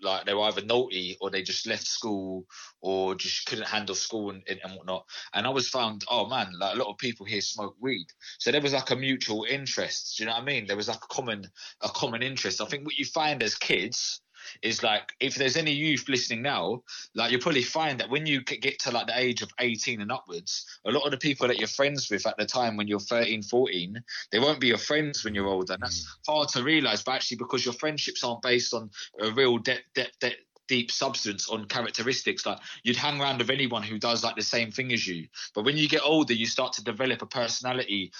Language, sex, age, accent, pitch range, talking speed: English, male, 20-39, British, 105-135 Hz, 245 wpm